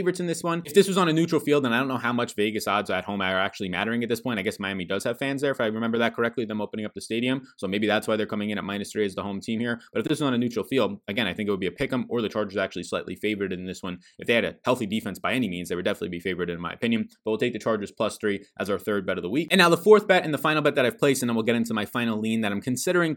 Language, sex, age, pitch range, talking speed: English, male, 20-39, 100-130 Hz, 355 wpm